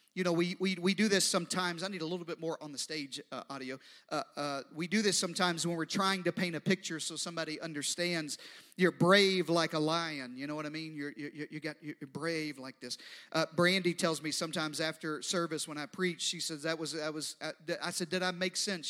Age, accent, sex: 40-59, American, male